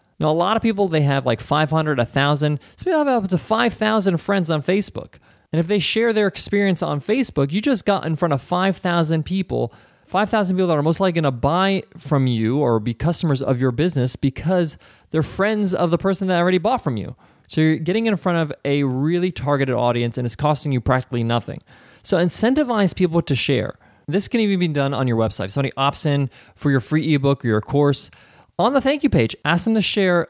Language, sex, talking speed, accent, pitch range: English, male, 220 wpm, American, 140-195 Hz